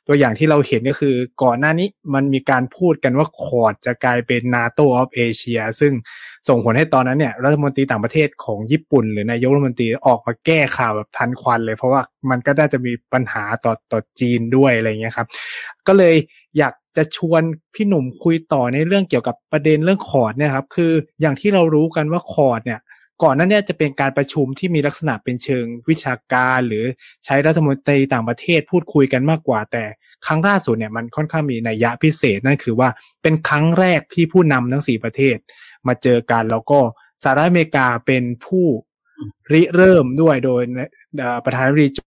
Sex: male